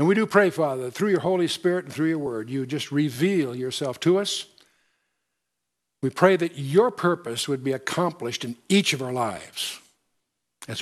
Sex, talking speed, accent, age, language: male, 190 wpm, American, 60-79, English